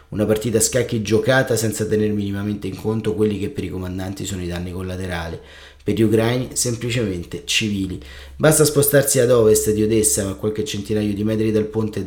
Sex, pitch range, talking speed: male, 100-115 Hz, 185 wpm